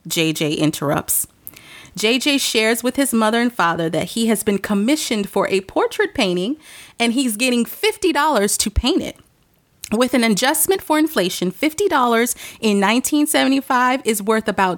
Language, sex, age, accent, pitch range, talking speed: English, female, 30-49, American, 185-250 Hz, 145 wpm